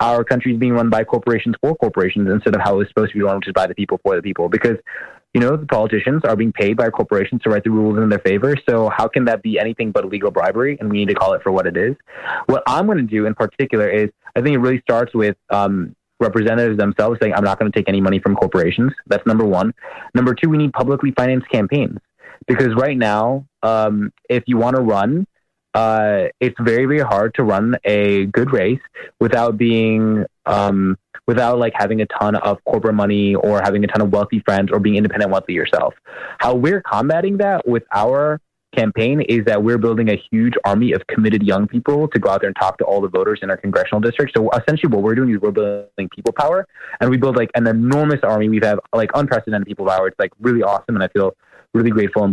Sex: male